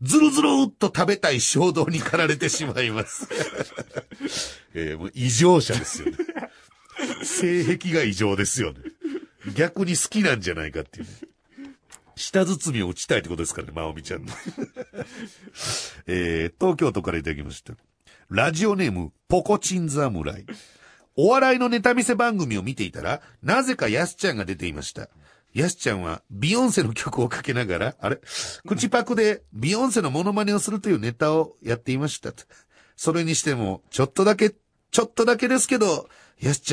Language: Japanese